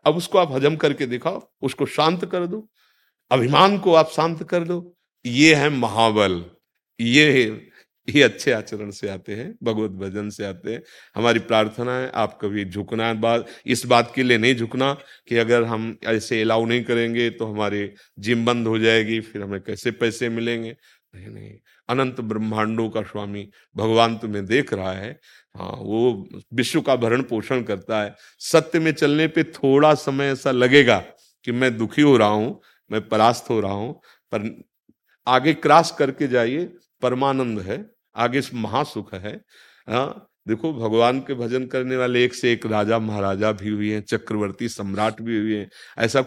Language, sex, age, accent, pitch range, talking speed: Hindi, male, 50-69, native, 110-135 Hz, 170 wpm